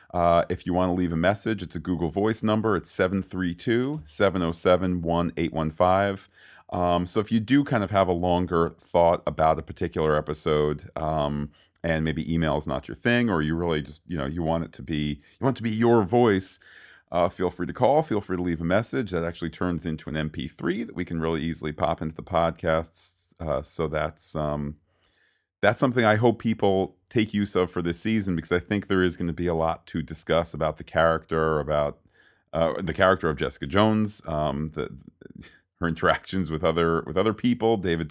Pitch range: 80-100 Hz